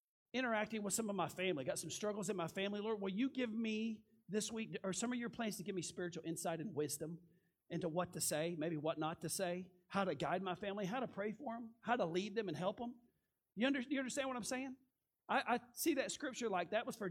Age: 40-59